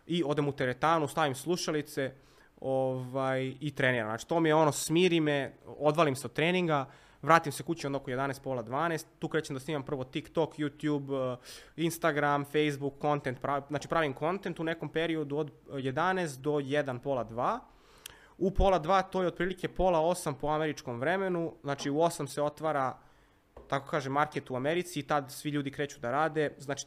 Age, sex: 20-39, male